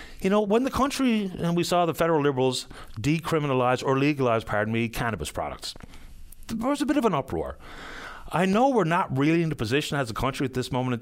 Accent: American